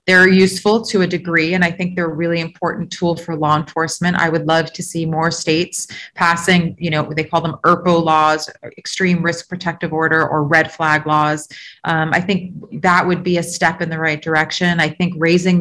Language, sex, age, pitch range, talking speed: English, female, 30-49, 160-180 Hz, 210 wpm